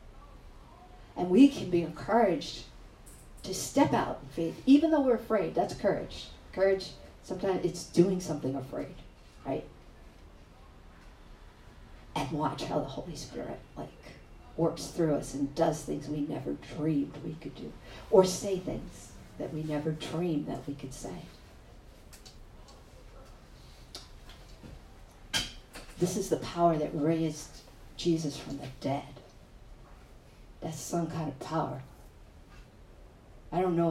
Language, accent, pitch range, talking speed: English, American, 130-165 Hz, 125 wpm